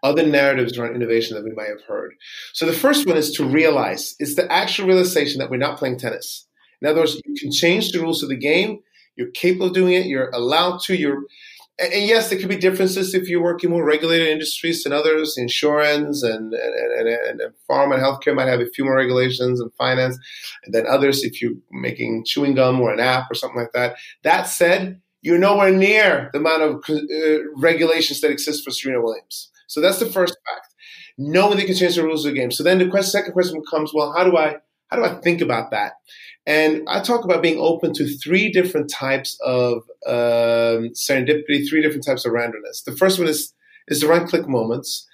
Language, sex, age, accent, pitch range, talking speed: English, male, 30-49, American, 140-190 Hz, 215 wpm